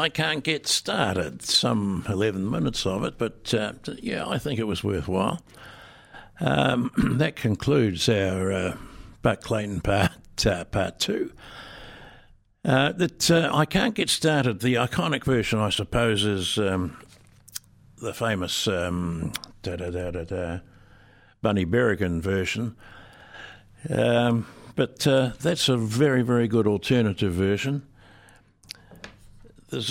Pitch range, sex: 95-120 Hz, male